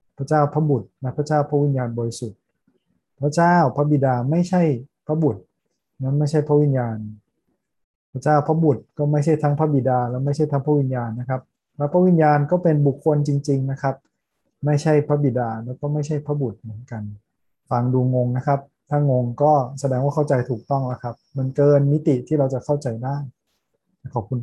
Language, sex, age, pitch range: Thai, male, 20-39, 125-145 Hz